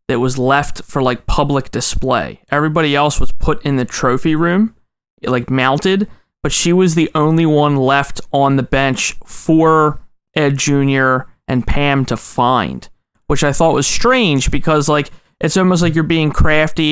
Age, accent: 30-49, American